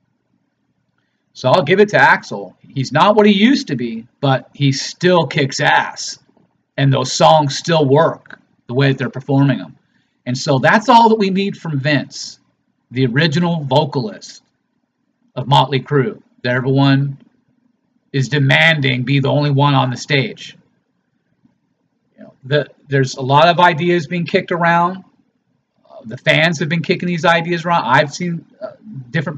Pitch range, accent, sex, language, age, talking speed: 140-180 Hz, American, male, English, 40-59, 155 wpm